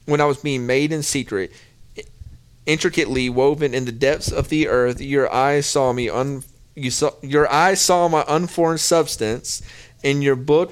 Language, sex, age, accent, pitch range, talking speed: English, male, 40-59, American, 120-145 Hz, 175 wpm